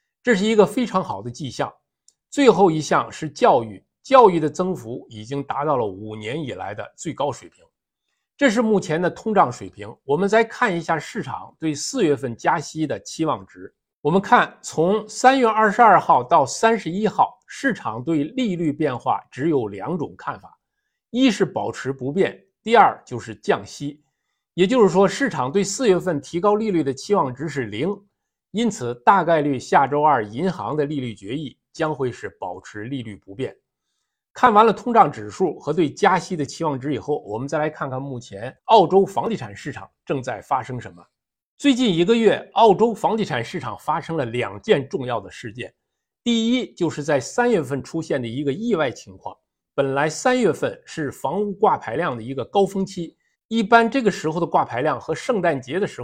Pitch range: 140-220 Hz